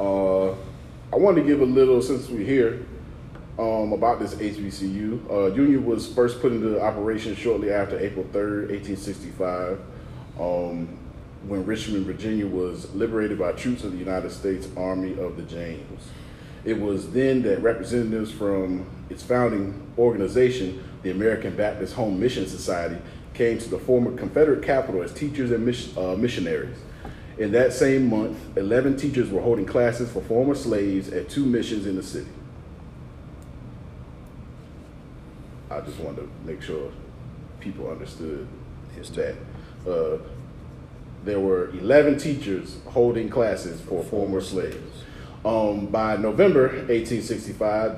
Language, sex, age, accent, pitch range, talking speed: English, male, 30-49, American, 95-120 Hz, 135 wpm